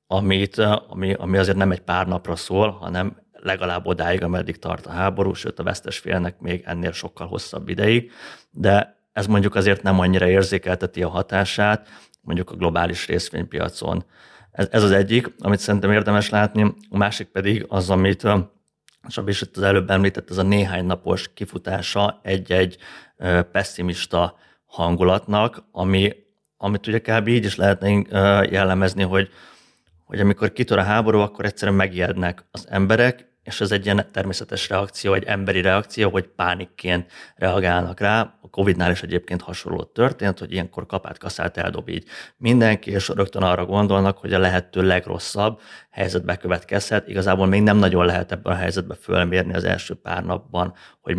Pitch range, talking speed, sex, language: 90-105 Hz, 155 wpm, male, Hungarian